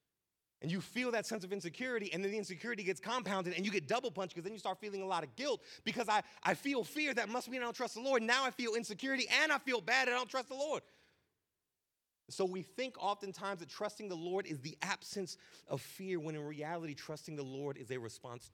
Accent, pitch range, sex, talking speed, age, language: American, 135-210 Hz, male, 245 wpm, 30-49, English